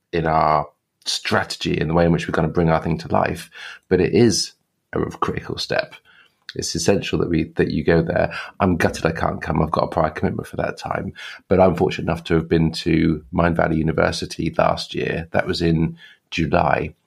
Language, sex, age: English, male, 30-49